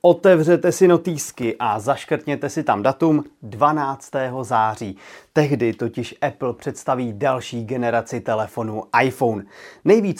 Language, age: Czech, 30-49